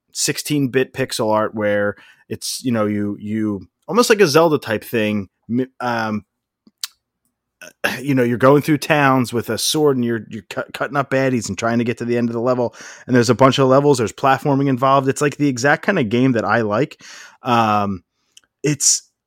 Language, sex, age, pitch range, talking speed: English, male, 20-39, 105-135 Hz, 200 wpm